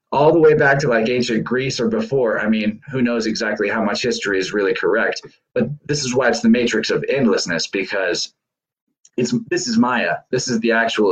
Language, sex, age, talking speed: English, male, 20-39, 210 wpm